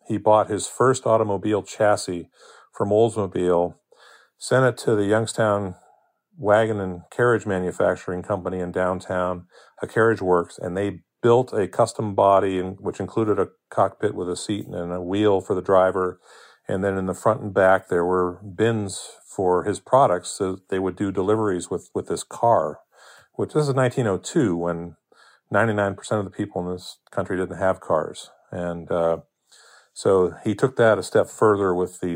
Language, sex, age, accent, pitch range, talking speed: English, male, 40-59, American, 90-110 Hz, 170 wpm